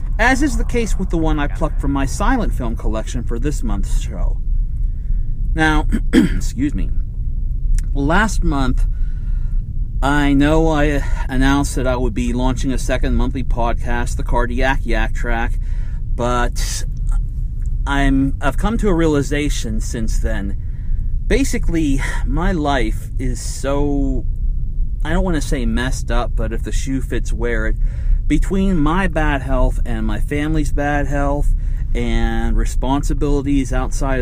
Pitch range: 110-140 Hz